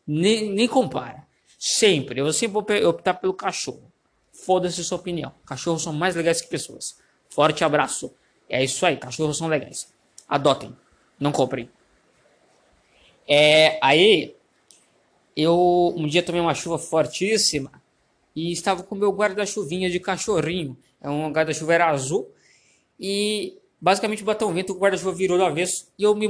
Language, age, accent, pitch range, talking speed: Portuguese, 20-39, Brazilian, 145-195 Hz, 155 wpm